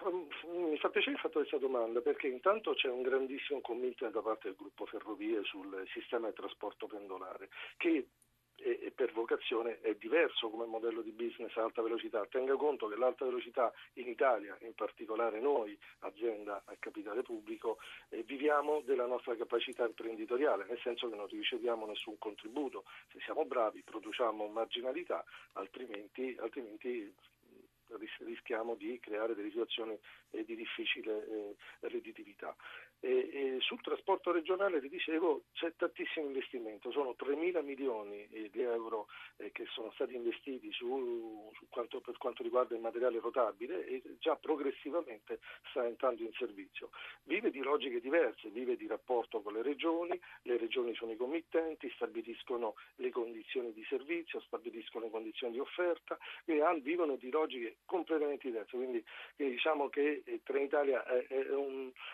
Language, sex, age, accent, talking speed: Italian, male, 40-59, native, 145 wpm